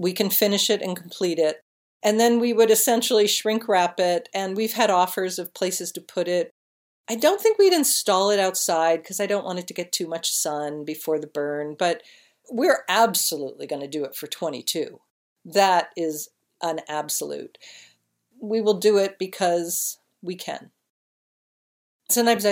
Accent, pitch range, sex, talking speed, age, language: American, 165-225 Hz, female, 175 wpm, 50-69, English